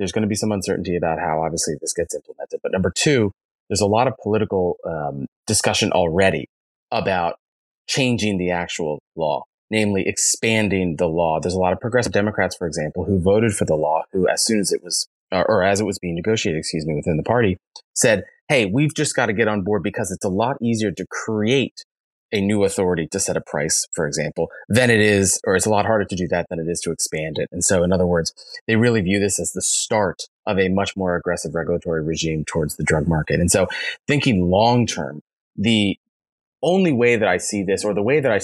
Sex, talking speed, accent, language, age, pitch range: male, 225 wpm, American, English, 30-49, 90-115 Hz